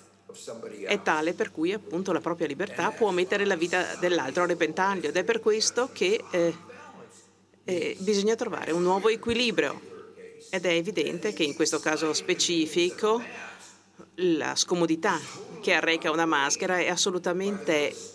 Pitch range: 155-210 Hz